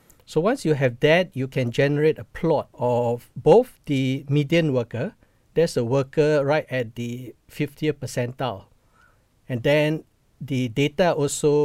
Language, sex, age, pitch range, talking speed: English, male, 50-69, 130-160 Hz, 145 wpm